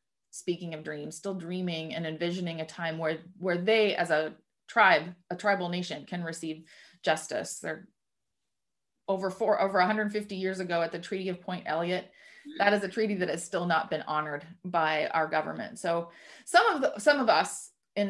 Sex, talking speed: female, 180 wpm